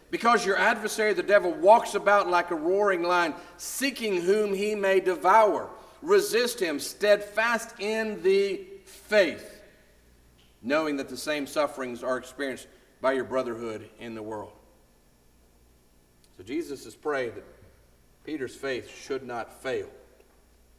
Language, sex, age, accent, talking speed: English, male, 50-69, American, 130 wpm